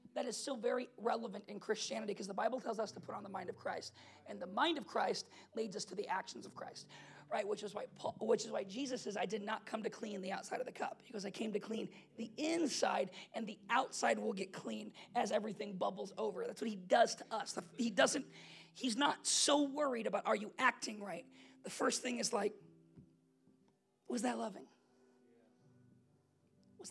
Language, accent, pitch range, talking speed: English, American, 195-255 Hz, 210 wpm